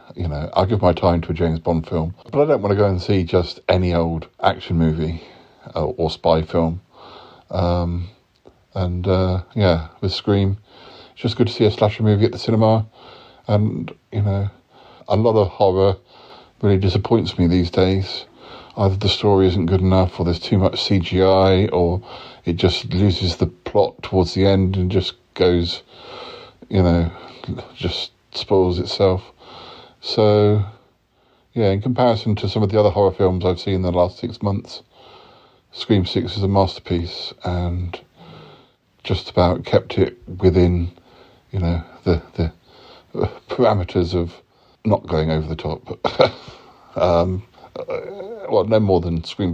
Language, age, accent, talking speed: English, 50-69, British, 160 wpm